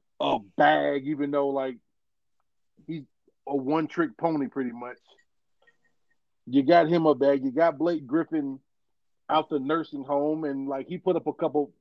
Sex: male